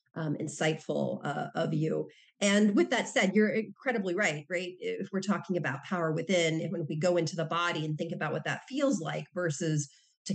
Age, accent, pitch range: 40-59, American, 160-195 Hz